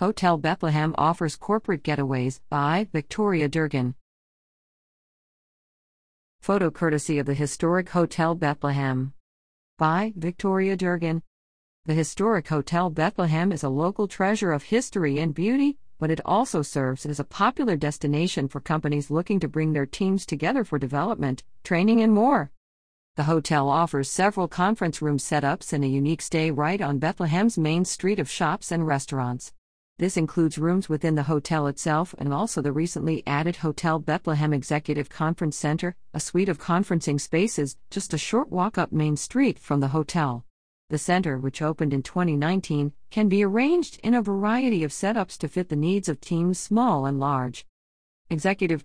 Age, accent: 50-69, American